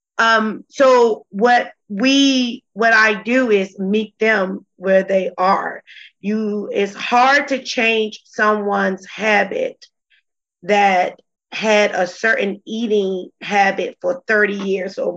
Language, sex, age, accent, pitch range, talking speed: English, female, 30-49, American, 190-220 Hz, 120 wpm